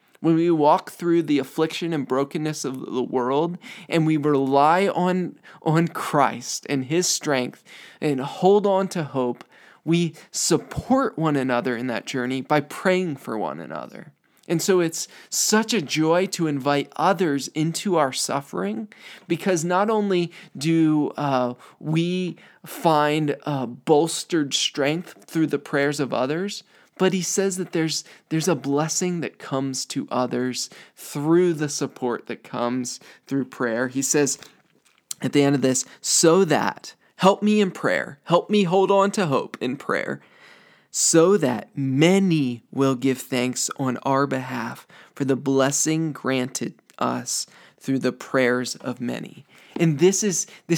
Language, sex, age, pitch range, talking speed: English, male, 20-39, 135-175 Hz, 150 wpm